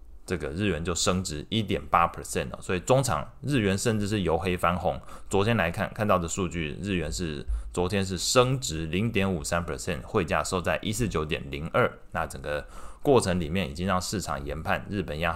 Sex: male